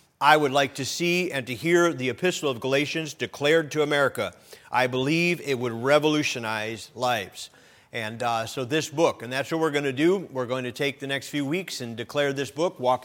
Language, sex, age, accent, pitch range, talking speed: English, male, 40-59, American, 125-150 Hz, 210 wpm